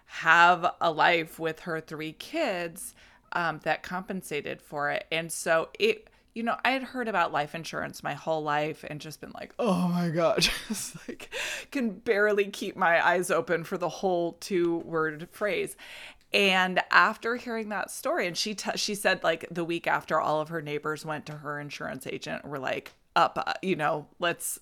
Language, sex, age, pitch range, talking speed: English, female, 20-39, 155-195 Hz, 185 wpm